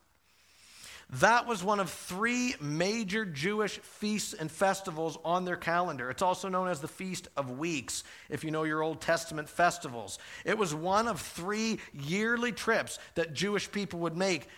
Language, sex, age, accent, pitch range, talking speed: English, male, 50-69, American, 165-205 Hz, 165 wpm